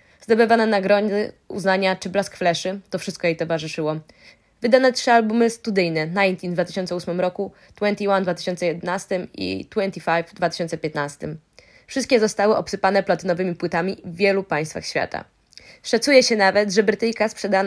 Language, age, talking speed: Polish, 20-39, 135 wpm